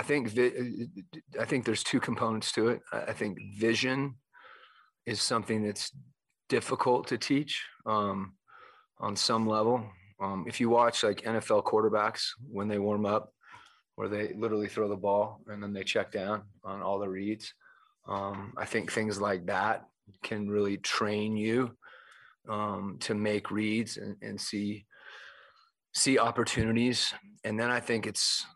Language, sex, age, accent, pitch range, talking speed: English, male, 30-49, American, 100-110 Hz, 155 wpm